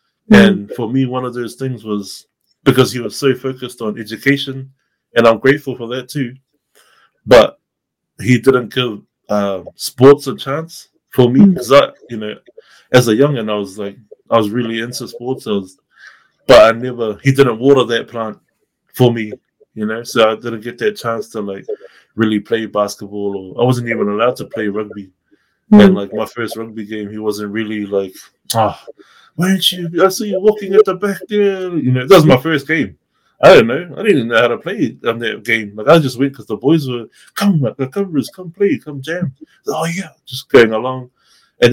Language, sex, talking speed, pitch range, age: English, male, 205 wpm, 115-150 Hz, 20-39